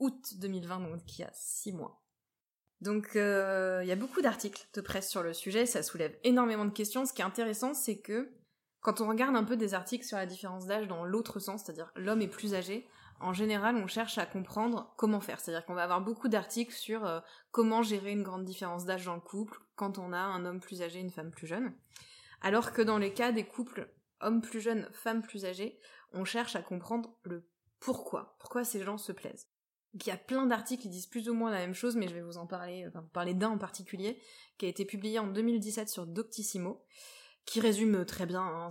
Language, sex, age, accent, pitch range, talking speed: French, female, 20-39, French, 185-230 Hz, 230 wpm